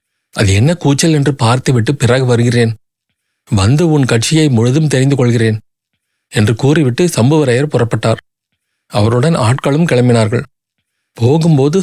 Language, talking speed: Tamil, 105 wpm